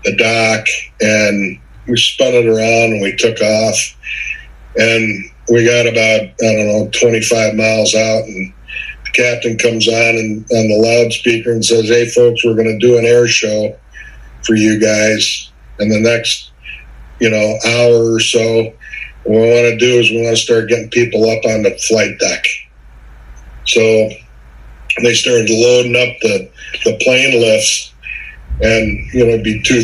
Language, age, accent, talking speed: English, 50-69, American, 170 wpm